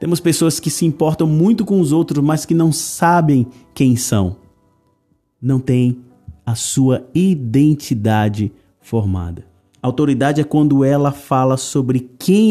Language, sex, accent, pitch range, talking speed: Portuguese, male, Brazilian, 110-145 Hz, 135 wpm